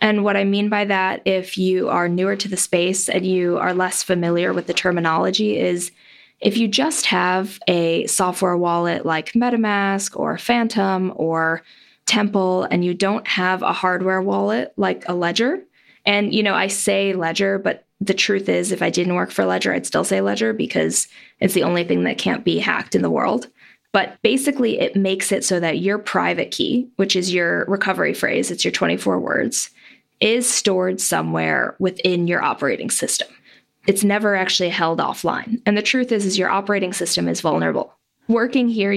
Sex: female